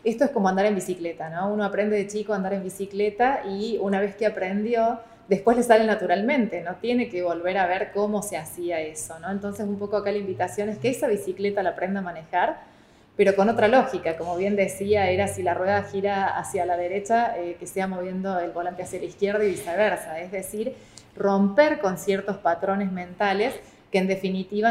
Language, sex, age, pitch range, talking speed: Spanish, female, 20-39, 185-215 Hz, 205 wpm